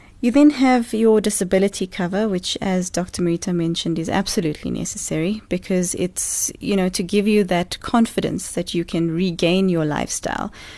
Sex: female